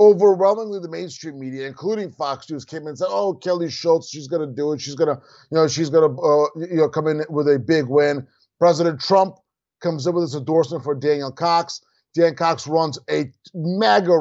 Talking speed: 215 wpm